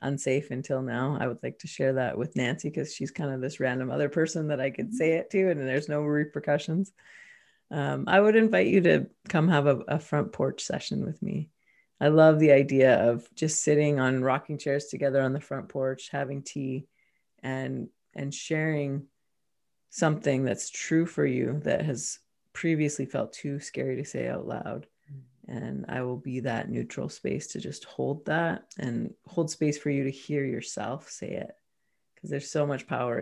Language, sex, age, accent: English, female, 30-49, American